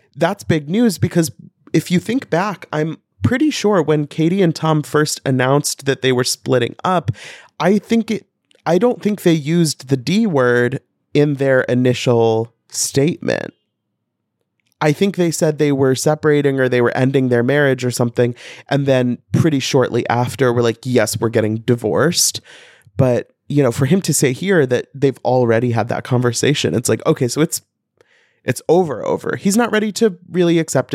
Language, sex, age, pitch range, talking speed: English, male, 20-39, 120-160 Hz, 175 wpm